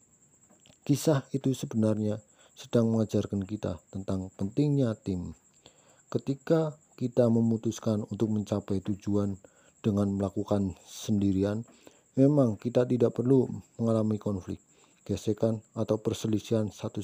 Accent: Indonesian